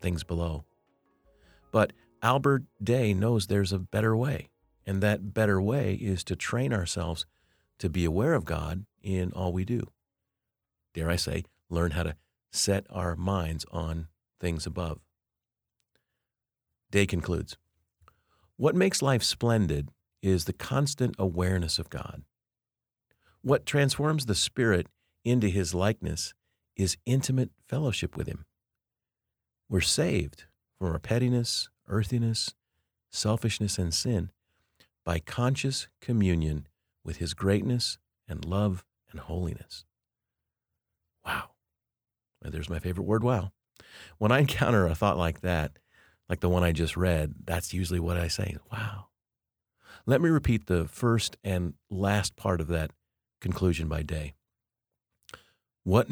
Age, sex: 50-69, male